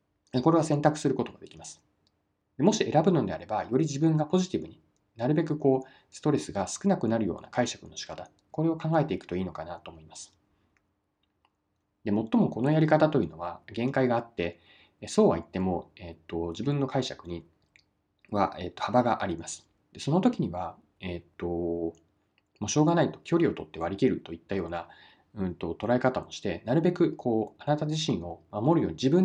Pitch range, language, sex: 90-150 Hz, Japanese, male